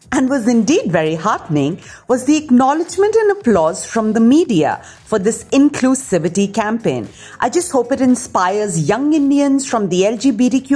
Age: 50-69